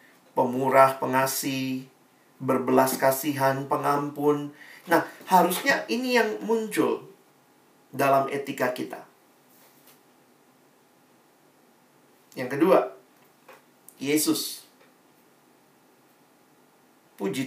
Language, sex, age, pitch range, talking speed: Indonesian, male, 50-69, 125-160 Hz, 60 wpm